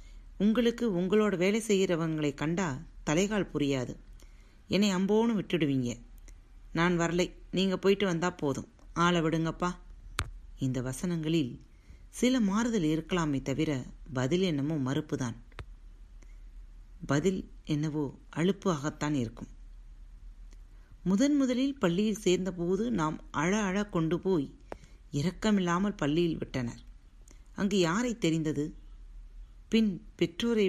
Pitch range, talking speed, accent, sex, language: 135-190 Hz, 95 wpm, native, female, Tamil